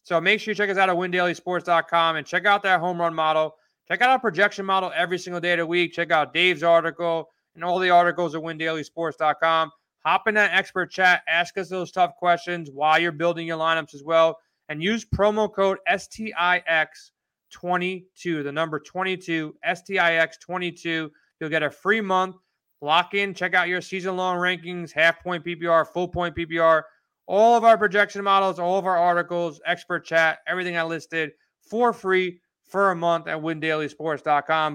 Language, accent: English, American